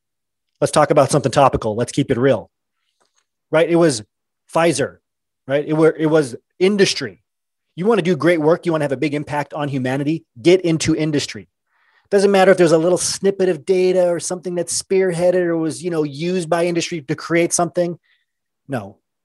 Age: 30-49